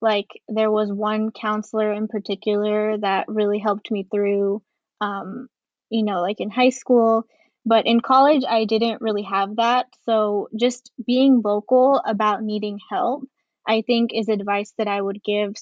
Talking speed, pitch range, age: 160 wpm, 215-245 Hz, 10-29